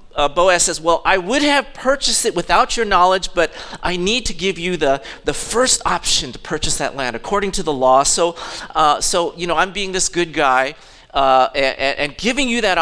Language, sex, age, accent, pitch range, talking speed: English, male, 40-59, American, 140-210 Hz, 215 wpm